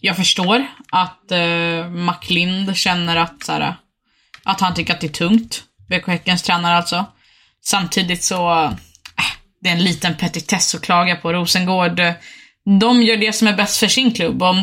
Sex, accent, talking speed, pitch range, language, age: female, native, 170 wpm, 170-195 Hz, Swedish, 20-39